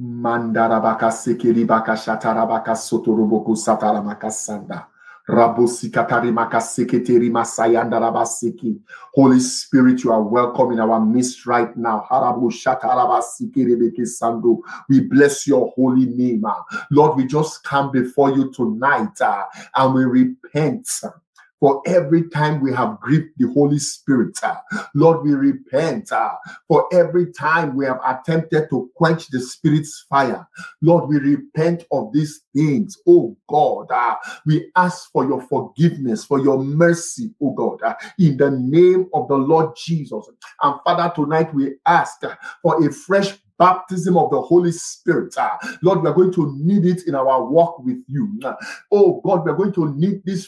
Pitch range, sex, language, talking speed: 125-180 Hz, male, English, 145 wpm